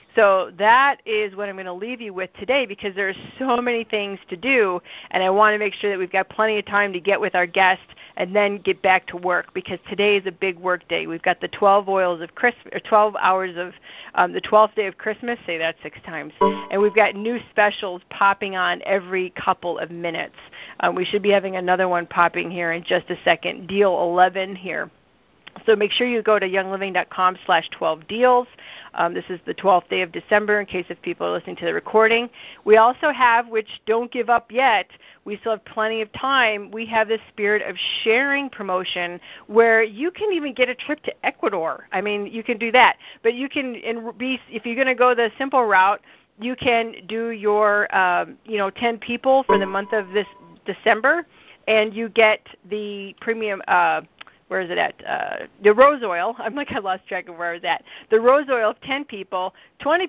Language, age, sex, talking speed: English, 40-59, female, 215 wpm